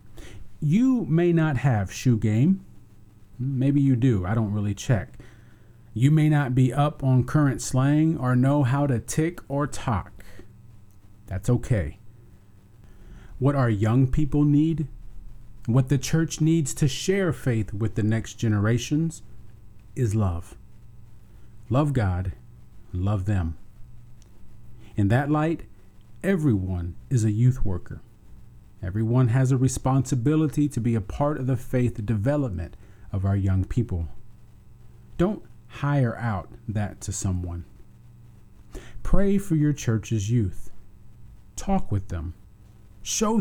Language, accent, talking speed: English, American, 125 wpm